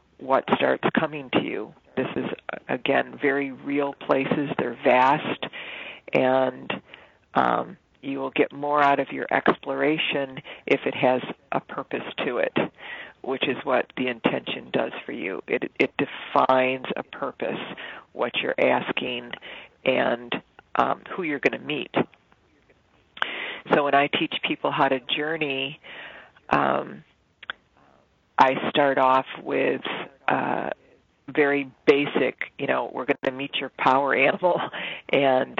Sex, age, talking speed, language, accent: female, 40-59, 130 wpm, English, American